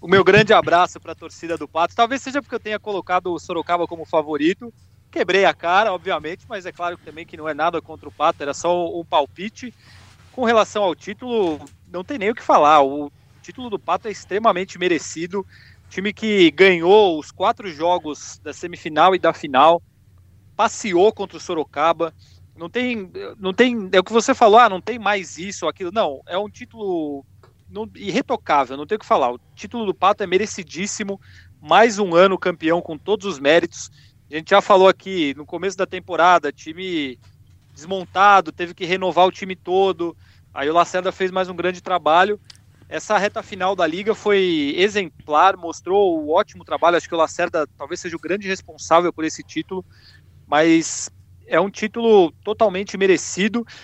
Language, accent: Portuguese, Brazilian